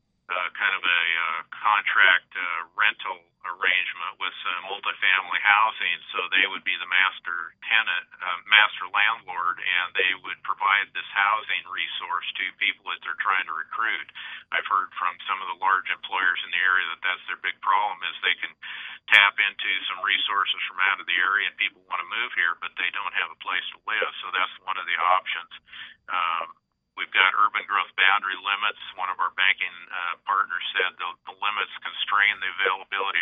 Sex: male